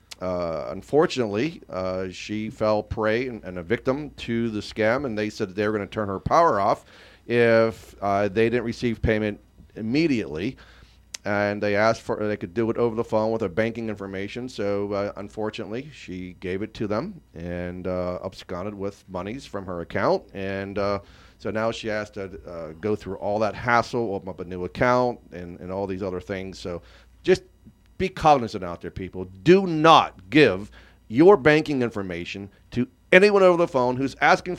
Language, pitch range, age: English, 100-145 Hz, 40-59